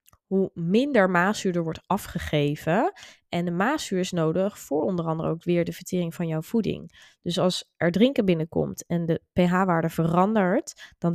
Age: 20-39